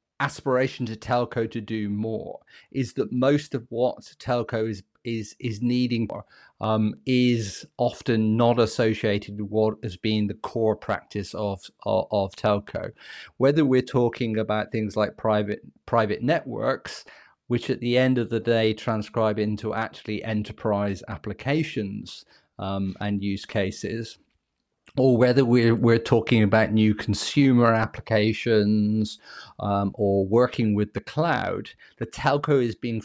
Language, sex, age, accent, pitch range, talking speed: English, male, 40-59, British, 105-125 Hz, 140 wpm